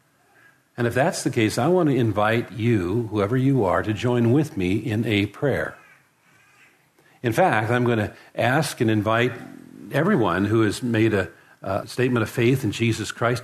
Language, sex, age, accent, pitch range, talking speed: English, male, 60-79, American, 110-150 Hz, 180 wpm